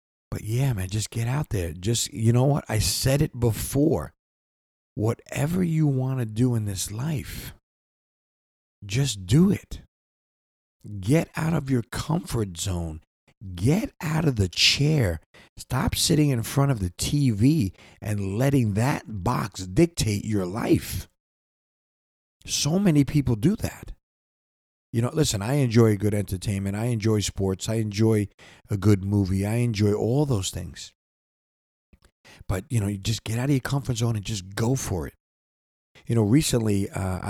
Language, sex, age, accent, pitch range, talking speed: English, male, 50-69, American, 95-125 Hz, 155 wpm